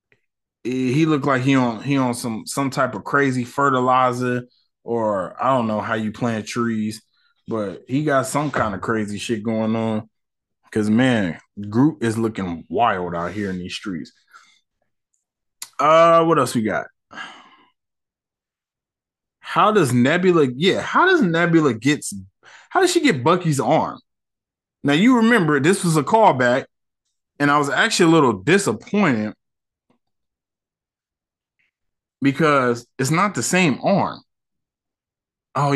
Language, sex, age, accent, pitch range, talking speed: English, male, 20-39, American, 120-200 Hz, 140 wpm